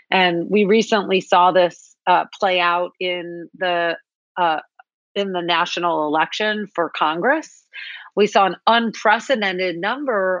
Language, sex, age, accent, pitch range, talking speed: English, female, 40-59, American, 175-235 Hz, 125 wpm